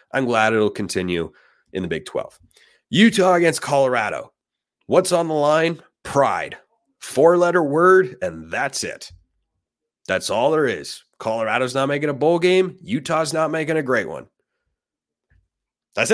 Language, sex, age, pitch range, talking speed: English, male, 30-49, 115-160 Hz, 140 wpm